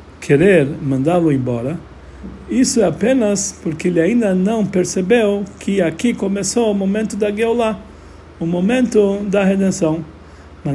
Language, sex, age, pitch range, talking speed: Portuguese, male, 60-79, 150-210 Hz, 130 wpm